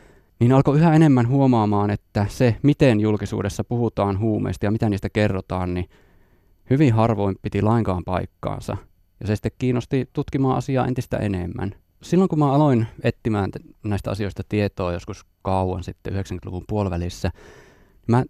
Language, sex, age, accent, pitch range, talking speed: Finnish, male, 20-39, native, 100-130 Hz, 140 wpm